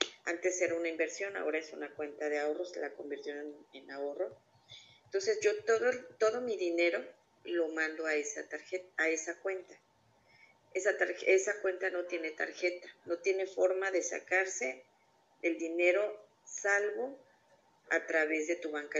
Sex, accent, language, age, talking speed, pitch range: female, Mexican, Spanish, 40-59, 155 wpm, 160-195 Hz